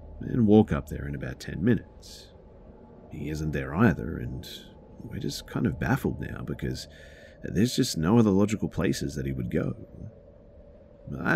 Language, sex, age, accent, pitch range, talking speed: English, male, 40-59, Australian, 70-95 Hz, 165 wpm